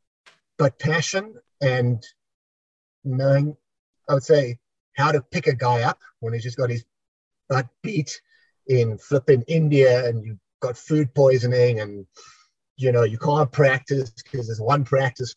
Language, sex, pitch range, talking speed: English, male, 115-160 Hz, 150 wpm